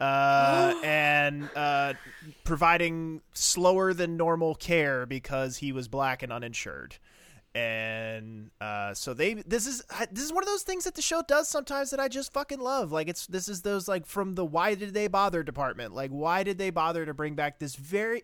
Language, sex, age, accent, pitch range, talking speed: English, male, 20-39, American, 120-180 Hz, 195 wpm